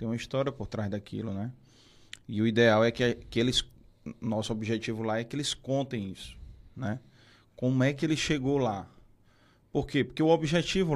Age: 20-39